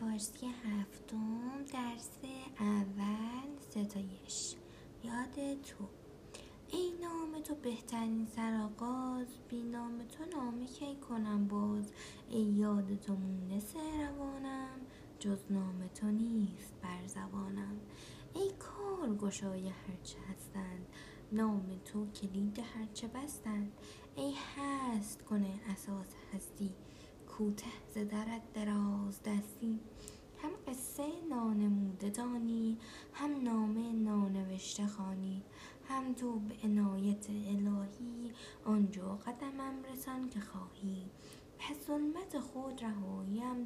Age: 20-39